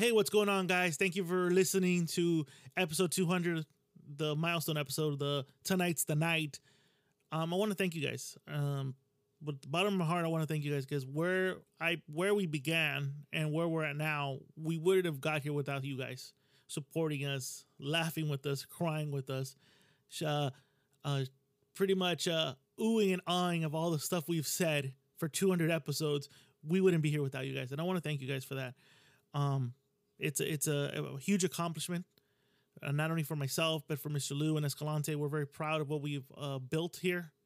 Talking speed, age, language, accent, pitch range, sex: 205 wpm, 20-39, English, American, 140-185 Hz, male